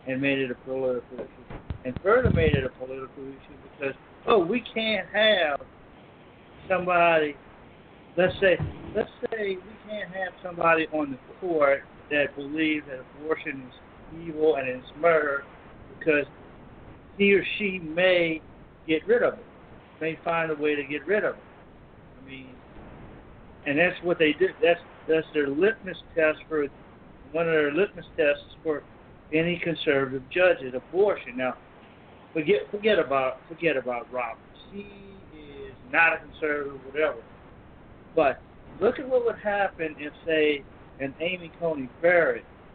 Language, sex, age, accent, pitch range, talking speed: English, male, 60-79, American, 140-180 Hz, 145 wpm